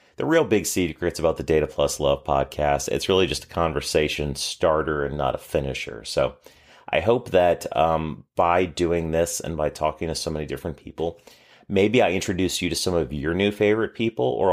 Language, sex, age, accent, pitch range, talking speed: English, male, 30-49, American, 75-95 Hz, 200 wpm